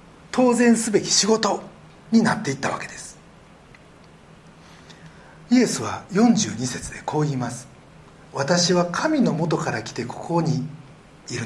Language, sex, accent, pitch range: Japanese, male, native, 145-220 Hz